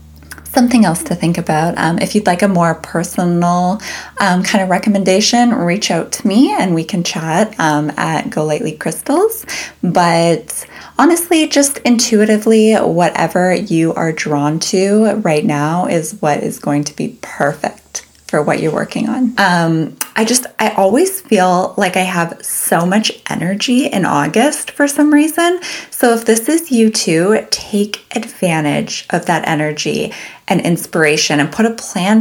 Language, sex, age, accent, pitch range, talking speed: English, female, 20-39, American, 165-220 Hz, 160 wpm